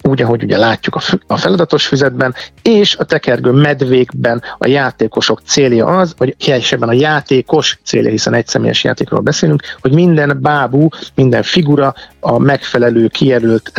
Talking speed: 145 wpm